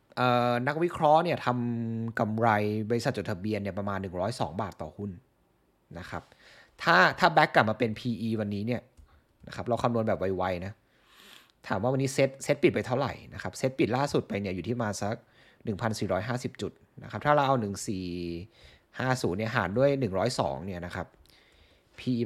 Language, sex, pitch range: Thai, male, 105-130 Hz